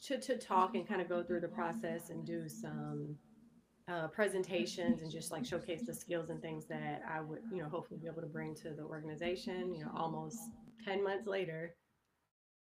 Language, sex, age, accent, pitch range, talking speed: English, female, 30-49, American, 155-185 Hz, 200 wpm